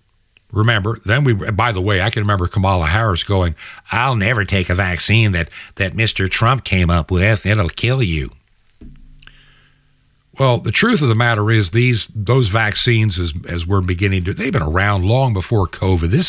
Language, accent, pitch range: English, American, 95-120 Hz